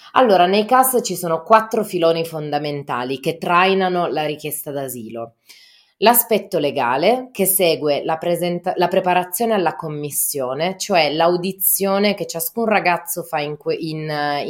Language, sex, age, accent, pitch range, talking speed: Italian, female, 20-39, native, 150-190 Hz, 135 wpm